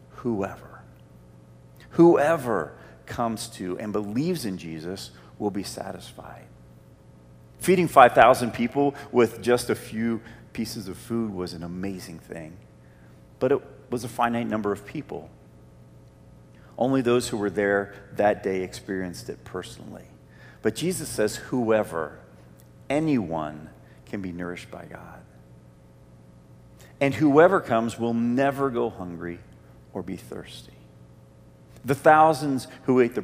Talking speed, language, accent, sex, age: 125 wpm, English, American, male, 40-59